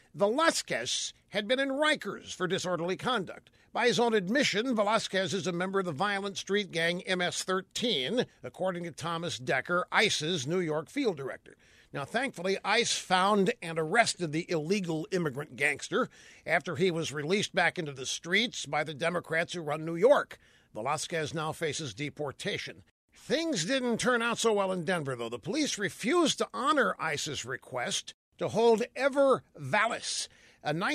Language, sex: English, male